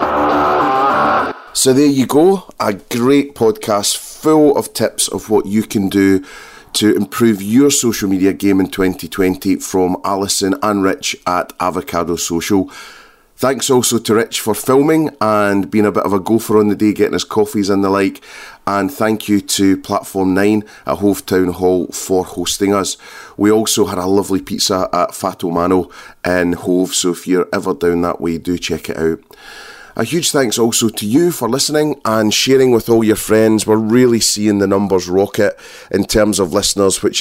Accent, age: British, 30-49